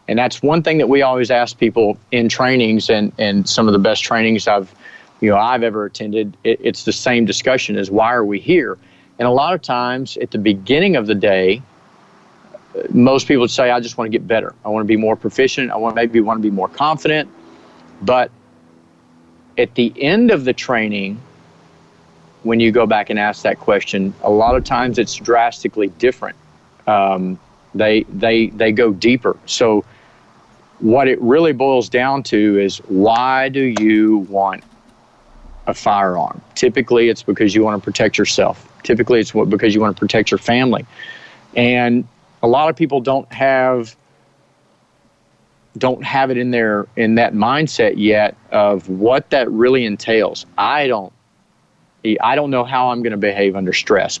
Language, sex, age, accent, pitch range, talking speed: English, male, 40-59, American, 105-130 Hz, 180 wpm